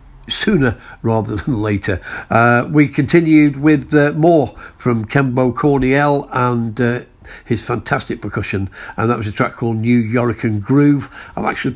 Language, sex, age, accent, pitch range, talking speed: English, male, 60-79, British, 110-135 Hz, 150 wpm